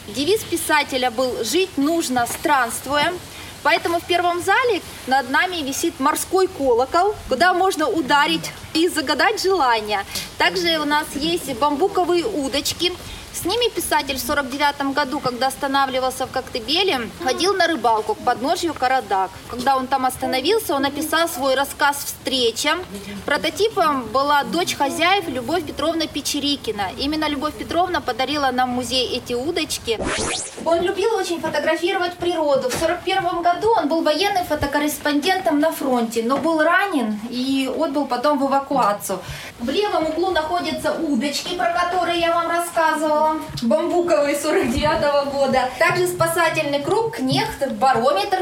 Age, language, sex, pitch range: 20-39, Russian, female, 270-350 Hz